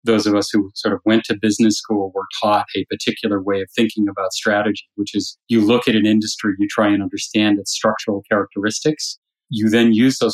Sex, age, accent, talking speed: male, 30-49, American, 215 wpm